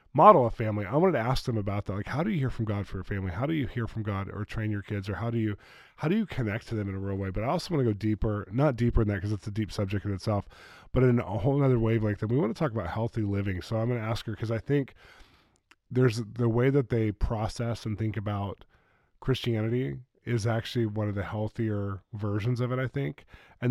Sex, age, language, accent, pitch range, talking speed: male, 20-39, English, American, 105-120 Hz, 270 wpm